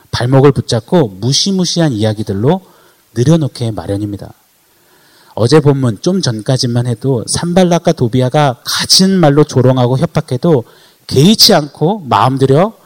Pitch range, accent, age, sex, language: 110-155 Hz, native, 30-49, male, Korean